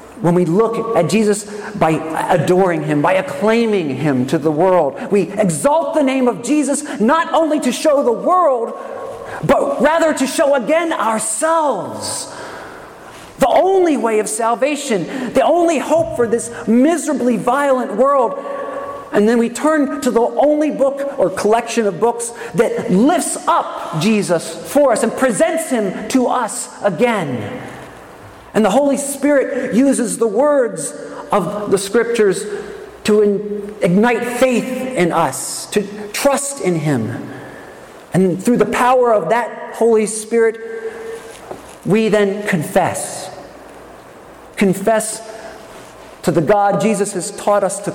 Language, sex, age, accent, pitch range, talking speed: English, male, 40-59, American, 195-265 Hz, 135 wpm